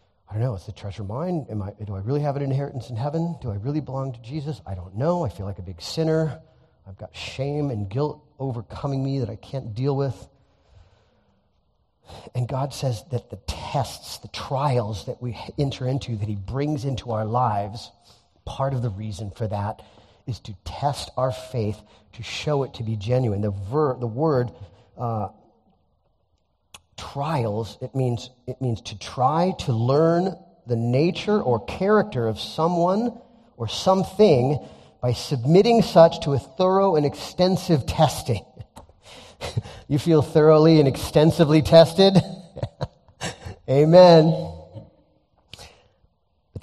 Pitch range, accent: 105-145 Hz, American